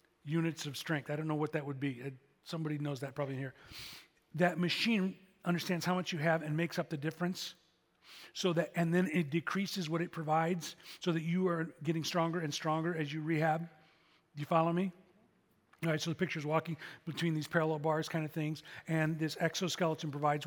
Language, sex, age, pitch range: English, male, 40-59, 155-175 Hz